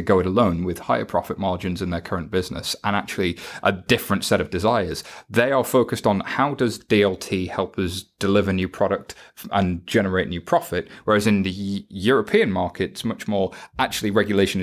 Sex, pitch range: male, 95-110 Hz